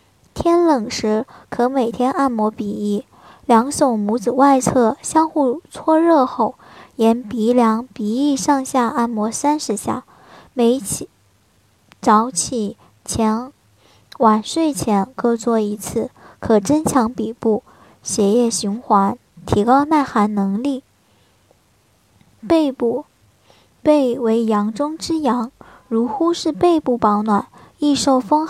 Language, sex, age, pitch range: Chinese, male, 10-29, 215-285 Hz